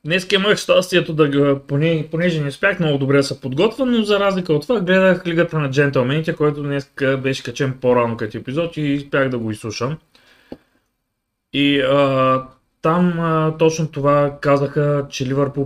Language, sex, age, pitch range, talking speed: Bulgarian, male, 20-39, 125-150 Hz, 155 wpm